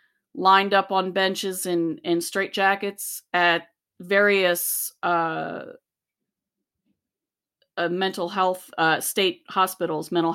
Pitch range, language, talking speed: 170-200 Hz, English, 100 wpm